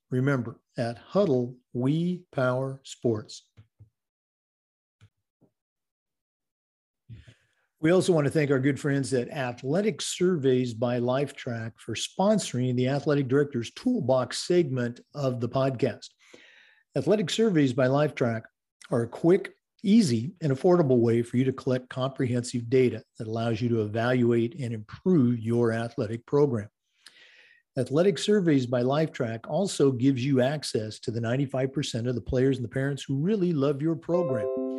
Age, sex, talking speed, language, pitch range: 50-69, male, 135 wpm, English, 120-150 Hz